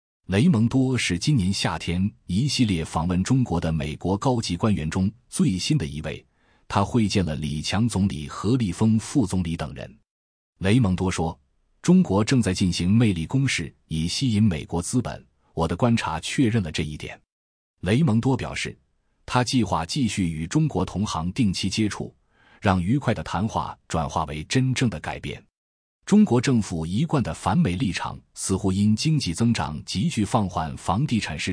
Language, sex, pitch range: Chinese, male, 80-115 Hz